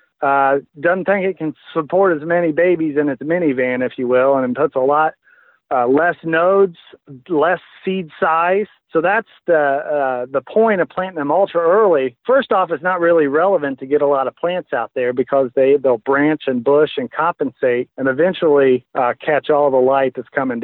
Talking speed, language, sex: 200 wpm, English, male